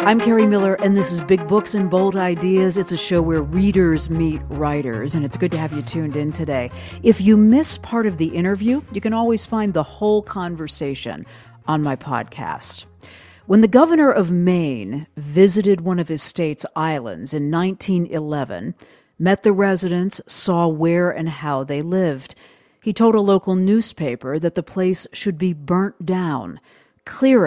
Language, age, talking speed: English, 50-69, 175 wpm